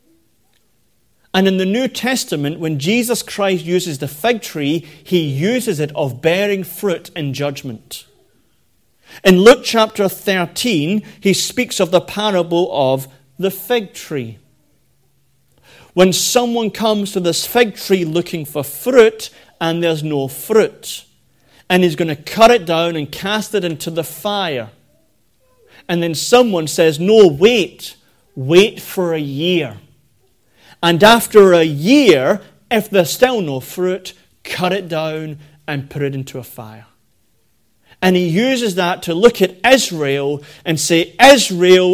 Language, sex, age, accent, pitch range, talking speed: English, male, 40-59, British, 145-200 Hz, 140 wpm